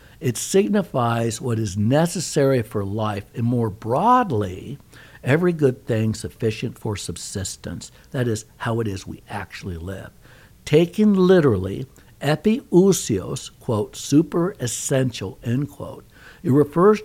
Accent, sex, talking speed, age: American, male, 120 wpm, 60-79